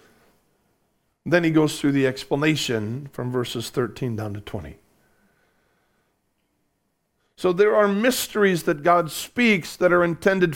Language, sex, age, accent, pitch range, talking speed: English, male, 40-59, American, 165-210 Hz, 125 wpm